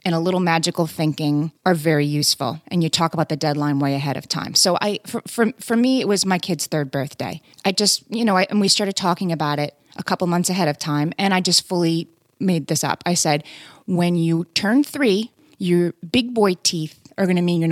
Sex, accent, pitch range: female, American, 150-195 Hz